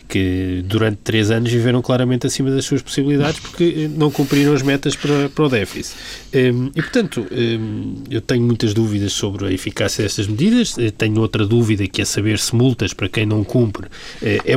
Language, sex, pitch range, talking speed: Portuguese, male, 105-145 Hz, 175 wpm